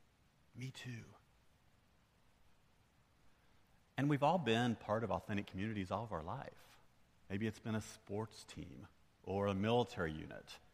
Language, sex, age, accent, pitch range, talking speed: English, male, 40-59, American, 95-120 Hz, 135 wpm